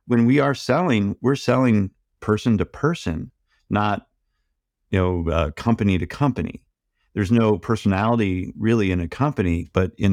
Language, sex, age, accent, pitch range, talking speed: English, male, 50-69, American, 95-115 Hz, 150 wpm